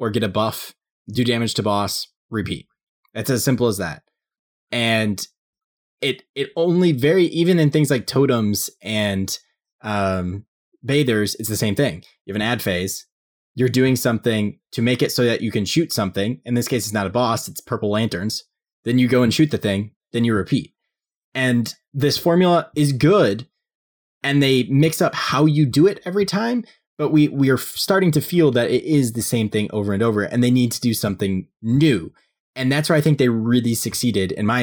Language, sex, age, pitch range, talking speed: English, male, 20-39, 105-135 Hz, 200 wpm